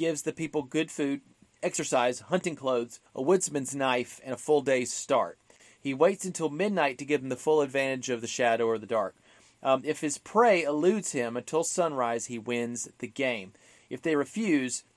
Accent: American